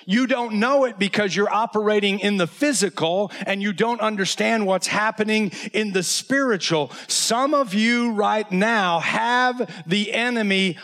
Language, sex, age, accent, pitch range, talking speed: English, male, 40-59, American, 195-240 Hz, 150 wpm